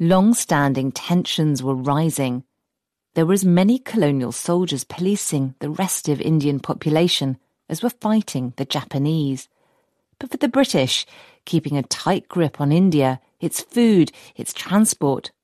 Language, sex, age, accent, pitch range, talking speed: English, female, 40-59, British, 145-195 Hz, 135 wpm